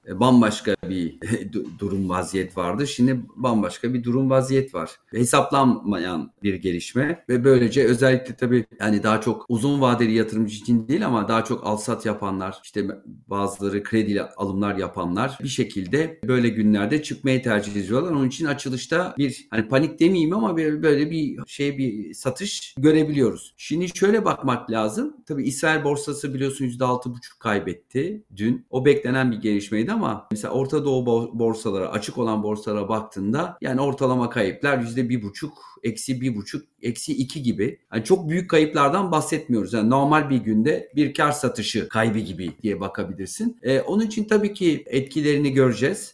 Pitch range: 105-140 Hz